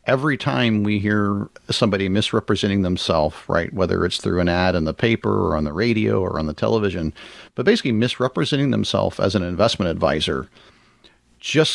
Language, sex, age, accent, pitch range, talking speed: English, male, 40-59, American, 95-125 Hz, 170 wpm